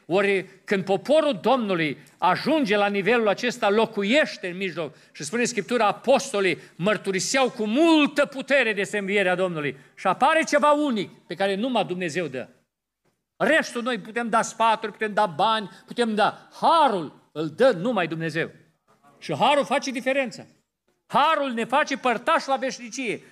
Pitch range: 200-285 Hz